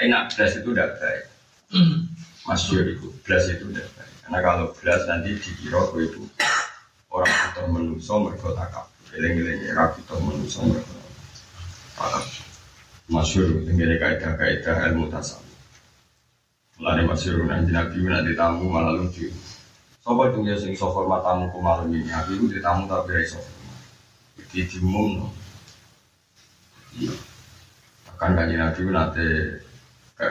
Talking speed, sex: 75 wpm, male